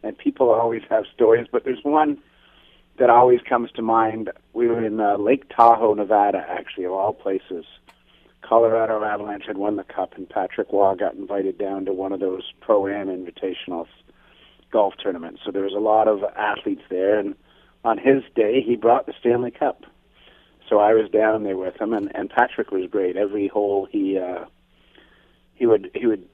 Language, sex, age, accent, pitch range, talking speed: English, male, 40-59, American, 100-145 Hz, 180 wpm